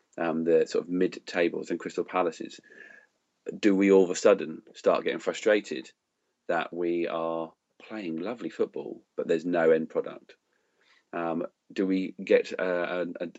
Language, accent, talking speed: English, British, 160 wpm